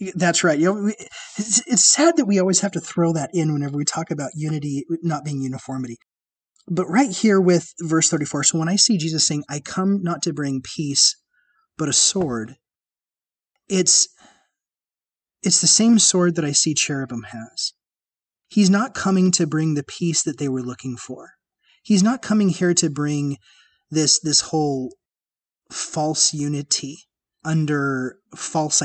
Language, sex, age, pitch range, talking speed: English, male, 30-49, 135-180 Hz, 165 wpm